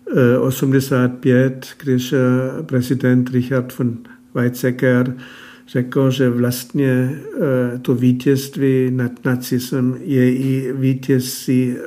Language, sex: Czech, male